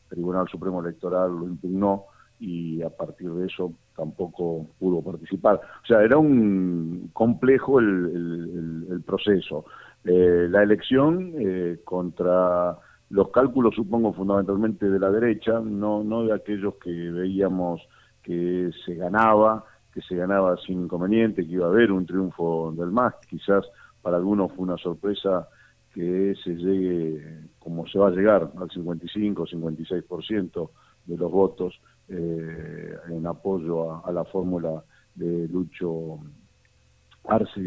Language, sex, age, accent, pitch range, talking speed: Spanish, male, 50-69, Argentinian, 85-105 Hz, 140 wpm